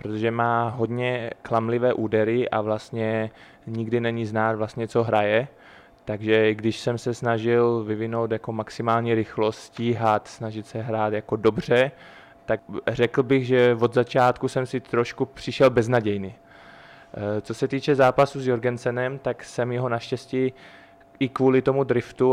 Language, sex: Czech, male